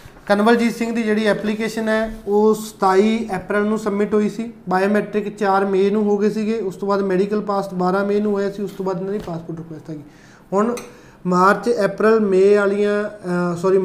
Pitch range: 185-205 Hz